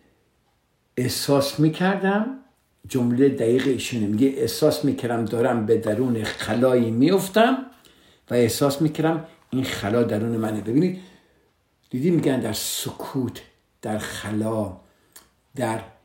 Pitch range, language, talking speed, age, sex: 115-165 Hz, Persian, 105 wpm, 60-79, male